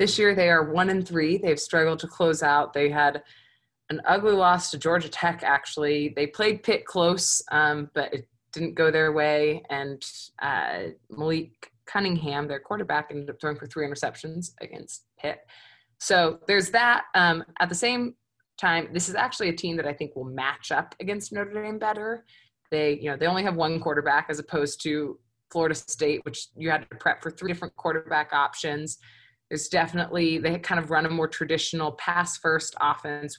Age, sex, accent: 20-39, female, American